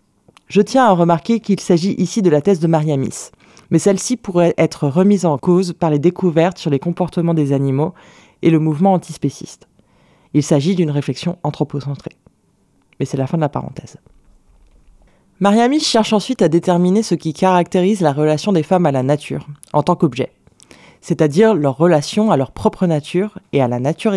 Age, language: 20-39, French